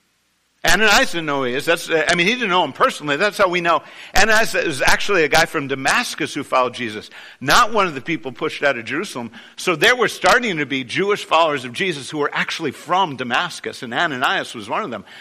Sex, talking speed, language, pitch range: male, 230 wpm, English, 130-200 Hz